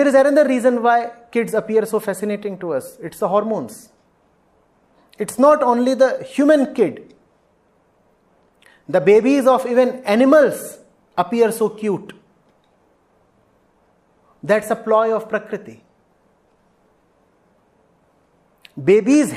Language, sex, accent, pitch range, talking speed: English, male, Indian, 200-245 Hz, 105 wpm